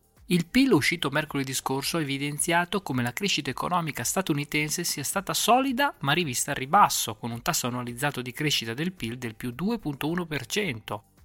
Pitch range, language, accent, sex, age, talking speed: 125-175 Hz, Italian, native, male, 20-39, 160 wpm